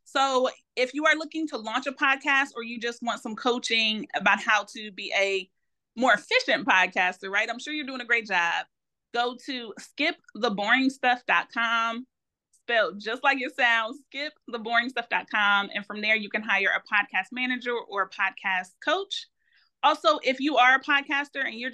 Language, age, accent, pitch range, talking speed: English, 30-49, American, 215-275 Hz, 170 wpm